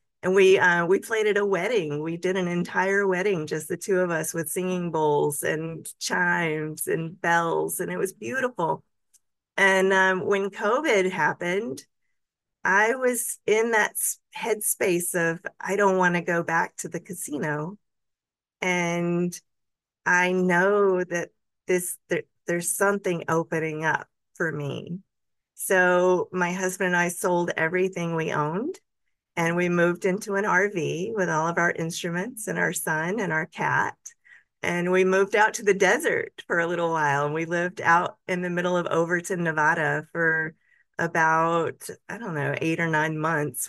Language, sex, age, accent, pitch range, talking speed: English, female, 40-59, American, 165-190 Hz, 160 wpm